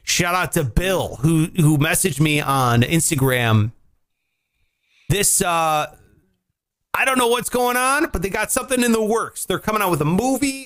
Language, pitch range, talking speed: English, 120-180 Hz, 175 wpm